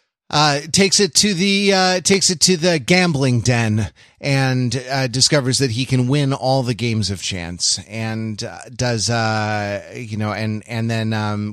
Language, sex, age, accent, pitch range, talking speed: English, male, 30-49, American, 105-130 Hz, 175 wpm